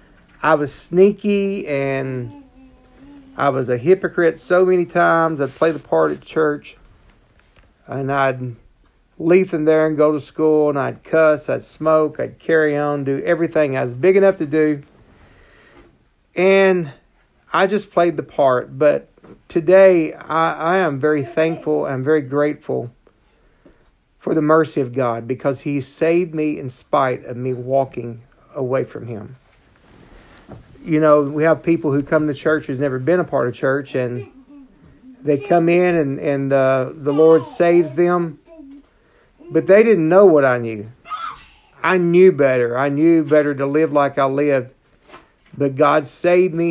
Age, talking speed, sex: 40-59, 160 wpm, male